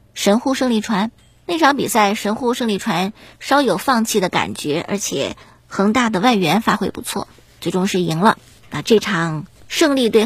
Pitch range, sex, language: 195-255 Hz, male, Chinese